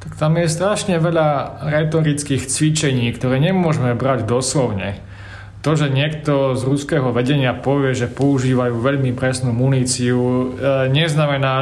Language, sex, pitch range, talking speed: Slovak, male, 125-155 Hz, 125 wpm